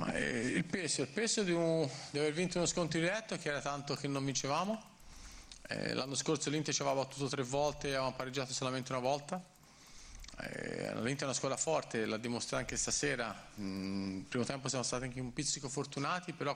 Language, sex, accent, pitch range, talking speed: Italian, male, native, 120-145 Hz, 195 wpm